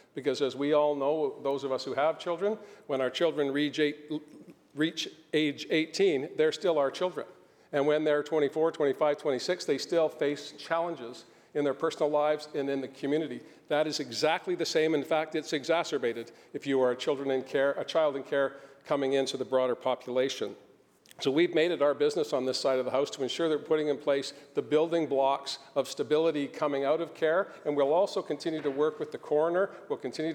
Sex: male